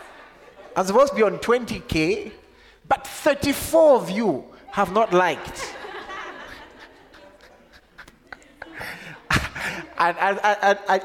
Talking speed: 105 wpm